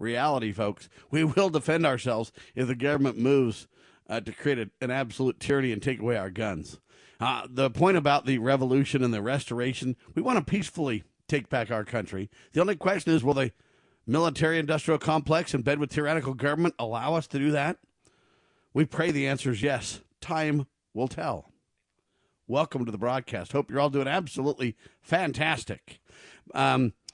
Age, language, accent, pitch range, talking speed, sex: 50-69, English, American, 125-160 Hz, 175 wpm, male